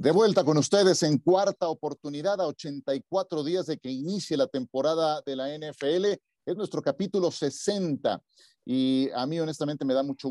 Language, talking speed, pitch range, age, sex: Spanish, 170 wpm, 130-175 Hz, 40-59, male